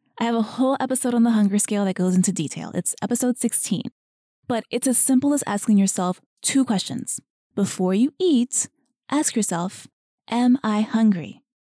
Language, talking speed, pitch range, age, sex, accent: English, 170 wpm, 200-255 Hz, 20-39, female, American